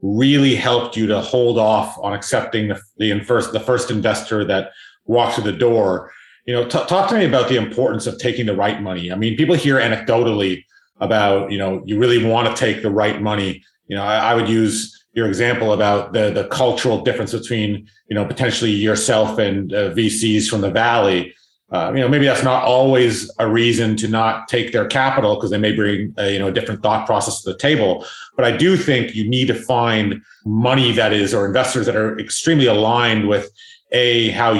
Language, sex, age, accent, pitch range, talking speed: English, male, 40-59, American, 105-125 Hz, 210 wpm